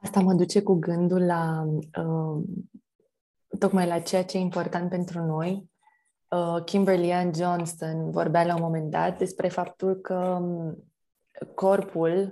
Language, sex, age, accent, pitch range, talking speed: Romanian, female, 20-39, native, 170-200 Hz, 125 wpm